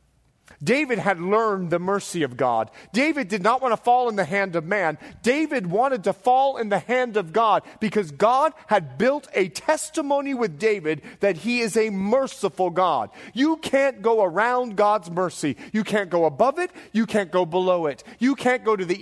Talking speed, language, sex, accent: 195 wpm, English, male, American